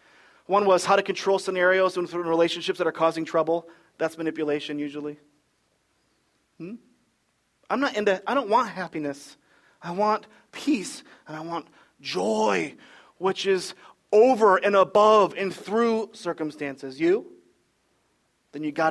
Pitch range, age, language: 160-215 Hz, 30-49, English